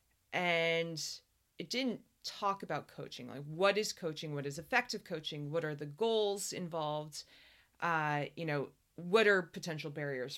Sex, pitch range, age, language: female, 155-215 Hz, 30-49, English